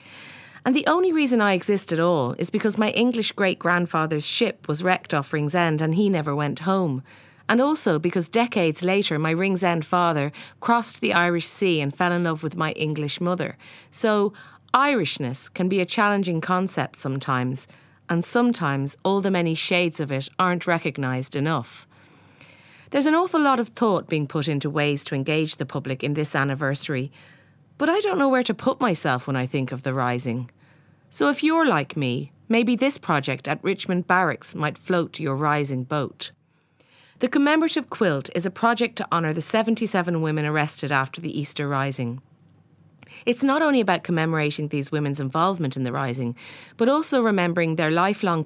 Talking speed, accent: 175 wpm, Irish